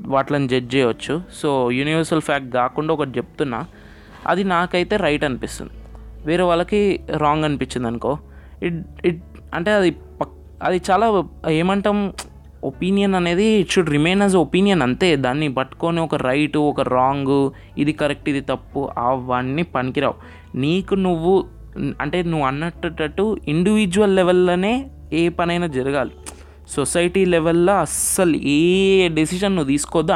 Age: 20-39